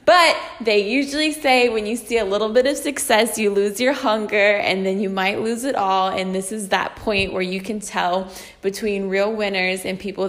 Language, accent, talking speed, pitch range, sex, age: English, American, 215 wpm, 190-230 Hz, female, 10-29